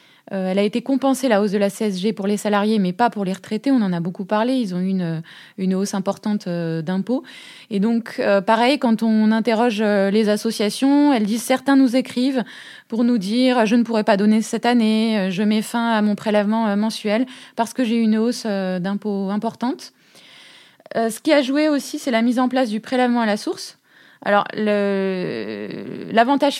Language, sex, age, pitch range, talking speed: French, female, 20-39, 205-255 Hz, 210 wpm